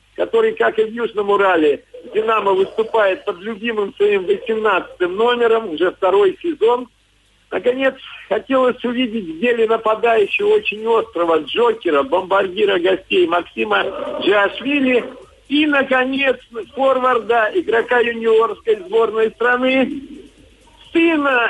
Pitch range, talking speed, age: 205-345 Hz, 105 wpm, 50-69